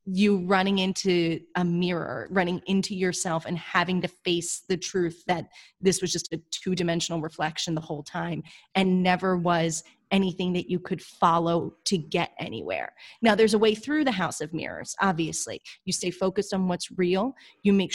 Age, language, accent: 30-49, English, American